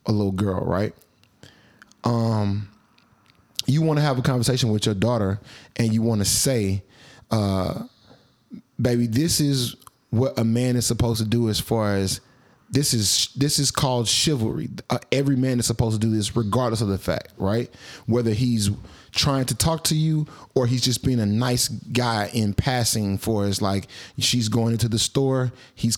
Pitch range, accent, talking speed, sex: 110-130 Hz, American, 180 wpm, male